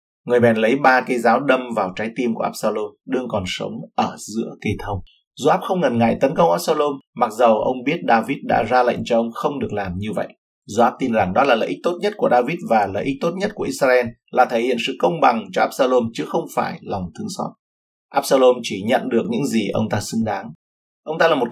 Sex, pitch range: male, 105-140 Hz